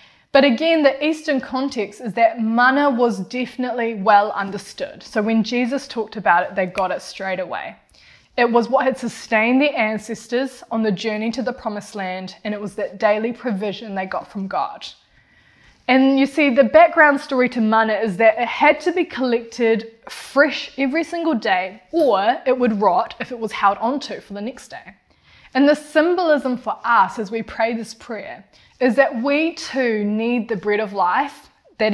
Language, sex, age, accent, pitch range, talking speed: English, female, 20-39, Australian, 215-270 Hz, 185 wpm